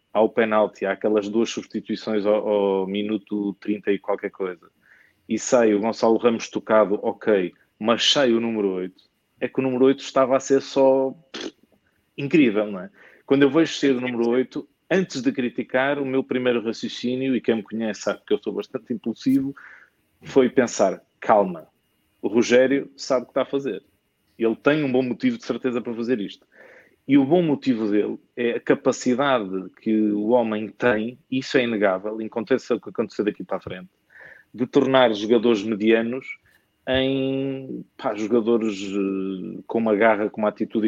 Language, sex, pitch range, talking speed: English, male, 105-130 Hz, 175 wpm